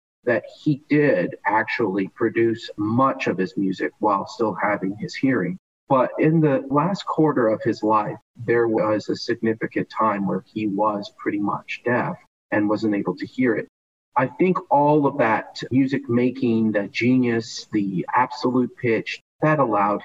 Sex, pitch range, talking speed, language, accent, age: male, 100-135 Hz, 160 wpm, English, American, 40-59